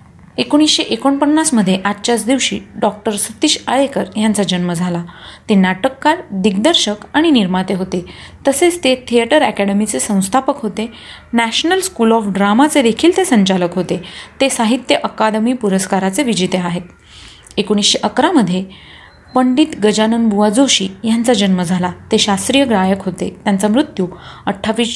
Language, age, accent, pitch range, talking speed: Marathi, 30-49, native, 195-260 Hz, 125 wpm